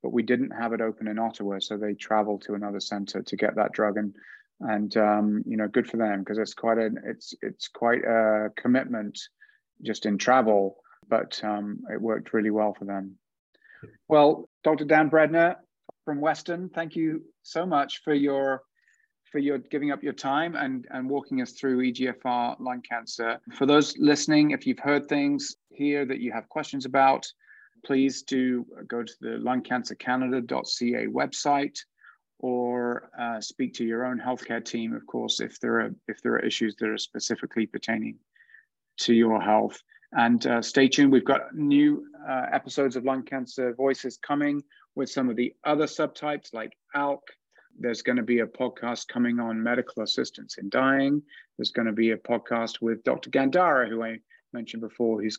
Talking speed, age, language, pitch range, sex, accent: 180 wpm, 30-49, English, 115-145 Hz, male, British